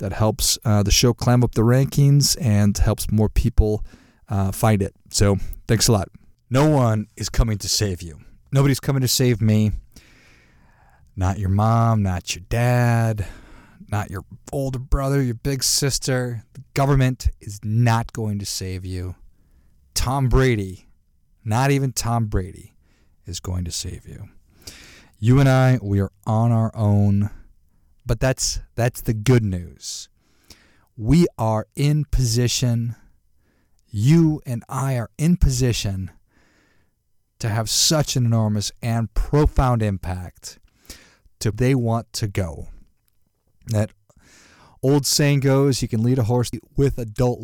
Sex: male